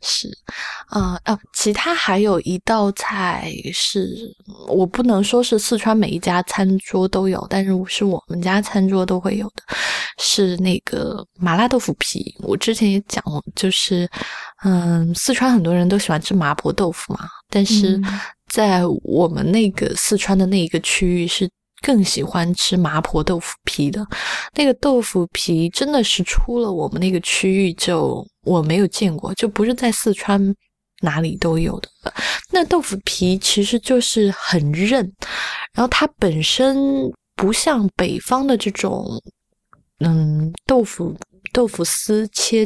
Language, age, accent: Chinese, 20-39, native